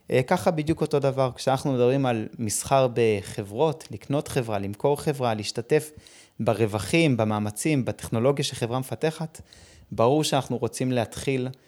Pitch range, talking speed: 115-140 Hz, 120 wpm